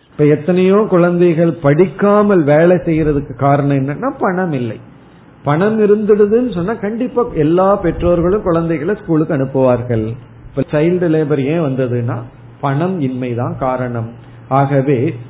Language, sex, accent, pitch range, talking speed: Tamil, male, native, 125-175 Hz, 45 wpm